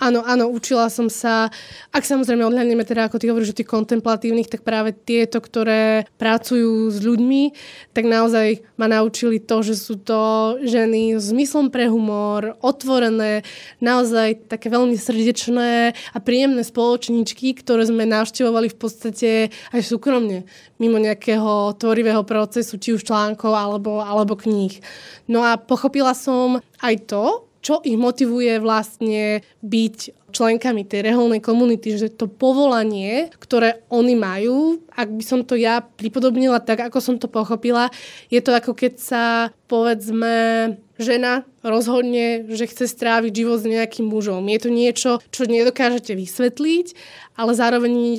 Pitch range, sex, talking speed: 220-245 Hz, female, 145 wpm